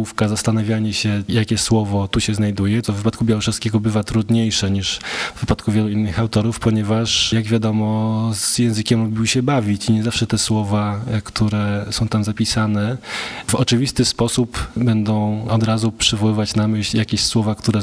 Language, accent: Polish, native